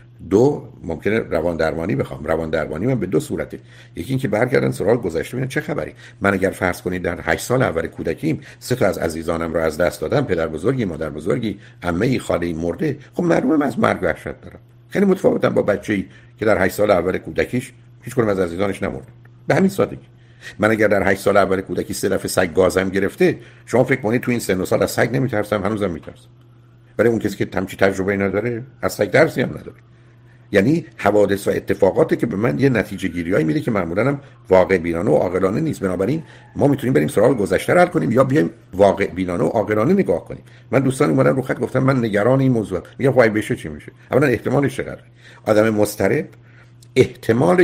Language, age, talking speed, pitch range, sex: Persian, 60-79, 195 wpm, 95-125 Hz, male